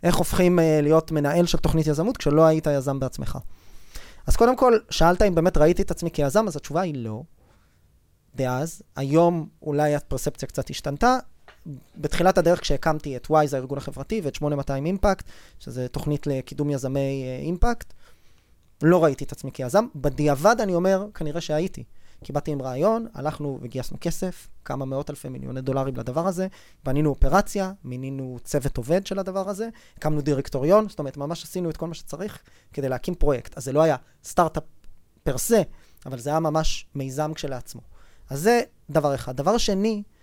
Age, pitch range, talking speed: 20-39, 135-185 Hz, 165 wpm